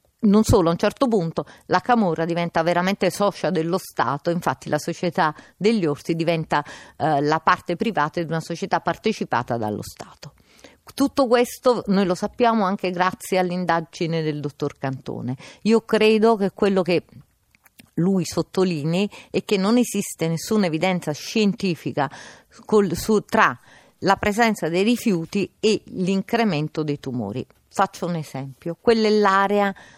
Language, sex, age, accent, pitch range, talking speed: Italian, female, 50-69, native, 165-205 Hz, 140 wpm